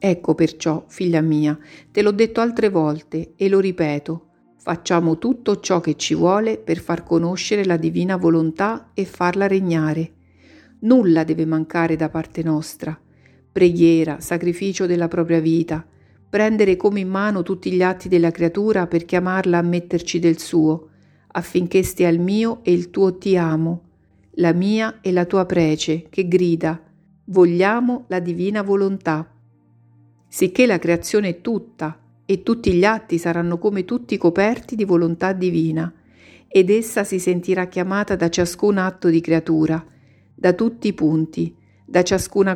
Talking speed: 150 wpm